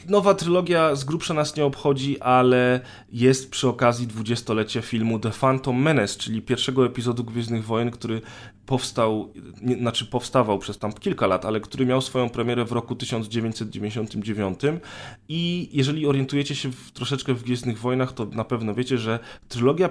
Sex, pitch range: male, 115-135 Hz